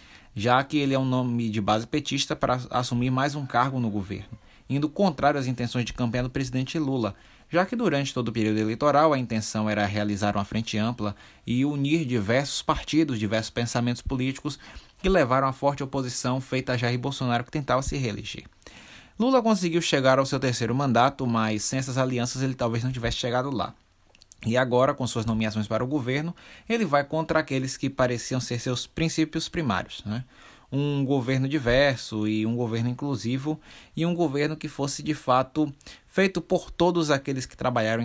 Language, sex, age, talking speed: Portuguese, male, 20-39, 180 wpm